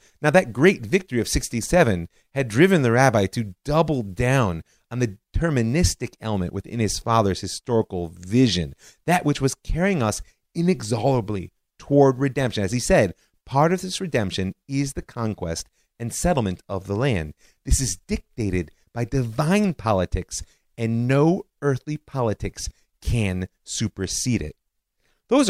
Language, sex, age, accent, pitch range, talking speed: English, male, 30-49, American, 95-145 Hz, 140 wpm